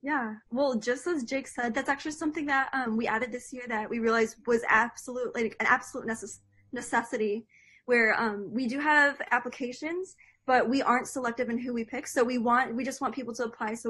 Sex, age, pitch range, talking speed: female, 10-29, 225-270 Hz, 205 wpm